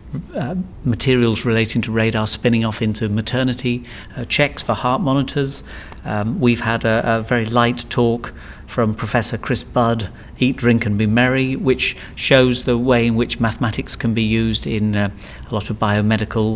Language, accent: English, British